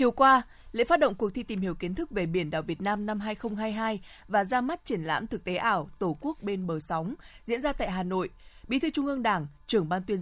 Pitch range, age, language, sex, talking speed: 185-235 Hz, 20-39, Vietnamese, female, 260 wpm